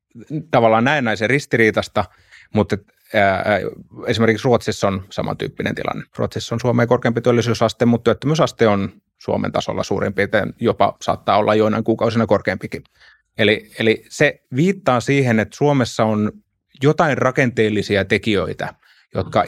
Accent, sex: native, male